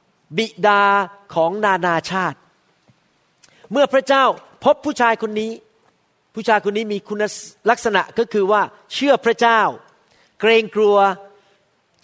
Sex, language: male, Thai